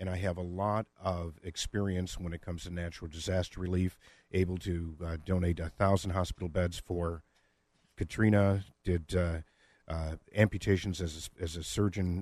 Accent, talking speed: American, 160 wpm